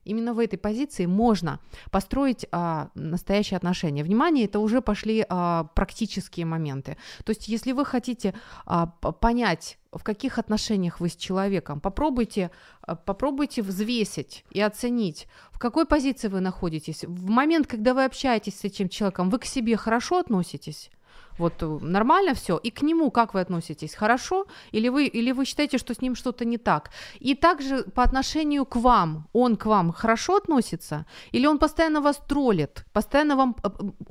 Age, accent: 30-49, native